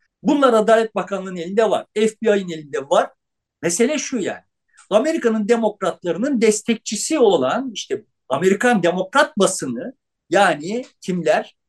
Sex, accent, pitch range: male, native, 185-265 Hz